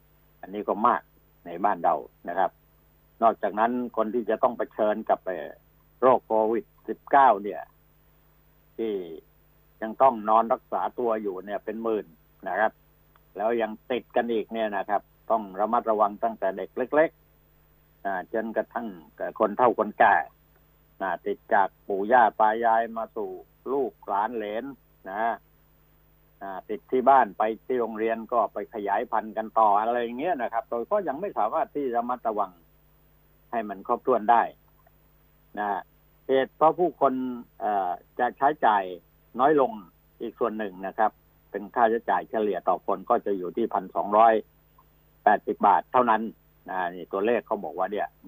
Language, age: Thai, 60-79